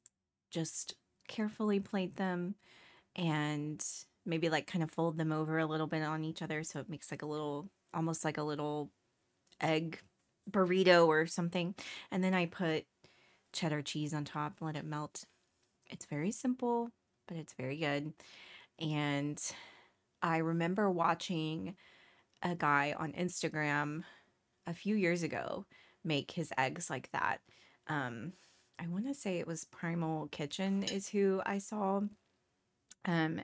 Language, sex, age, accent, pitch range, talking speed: English, female, 20-39, American, 155-190 Hz, 145 wpm